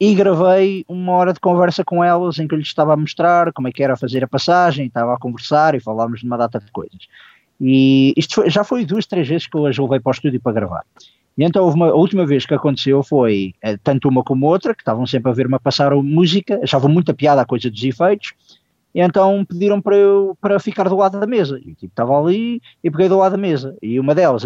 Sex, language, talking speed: male, Portuguese, 245 wpm